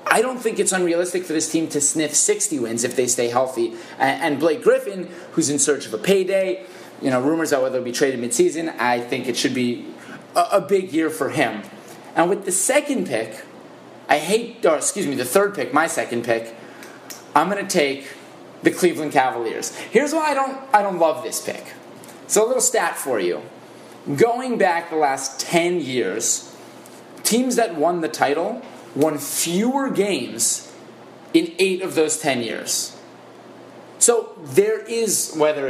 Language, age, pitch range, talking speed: English, 30-49, 140-200 Hz, 175 wpm